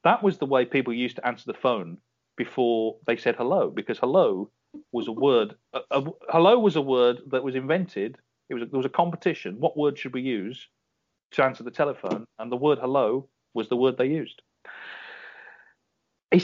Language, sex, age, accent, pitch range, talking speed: English, male, 40-59, British, 120-170 Hz, 195 wpm